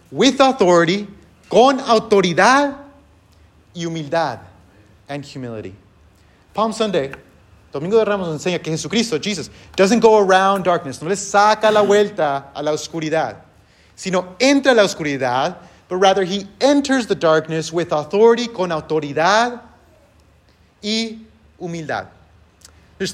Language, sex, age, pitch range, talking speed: English, male, 30-49, 115-185 Hz, 120 wpm